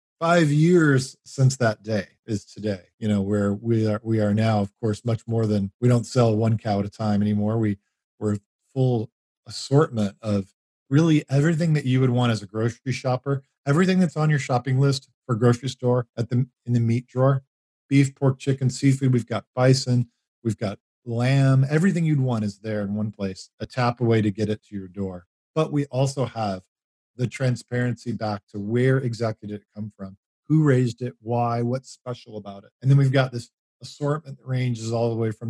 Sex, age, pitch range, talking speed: male, 40-59, 105-130 Hz, 205 wpm